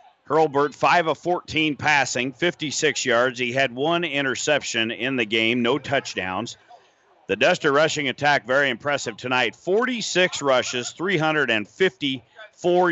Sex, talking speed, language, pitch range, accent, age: male, 120 wpm, English, 115-145 Hz, American, 50-69